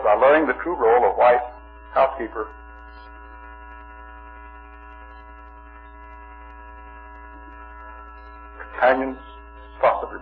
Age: 60-79